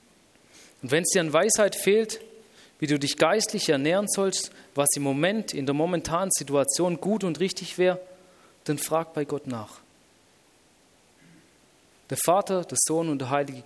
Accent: German